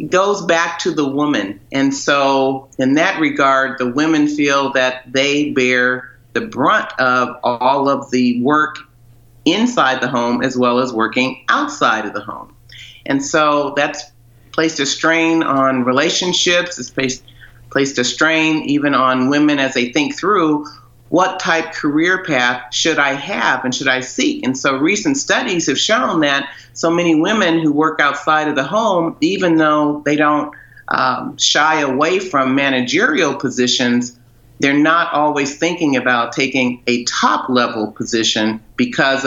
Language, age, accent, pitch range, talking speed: English, 40-59, American, 125-155 Hz, 155 wpm